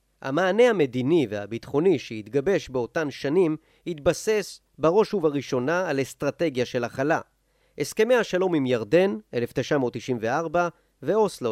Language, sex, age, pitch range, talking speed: Hebrew, male, 40-59, 130-175 Hz, 100 wpm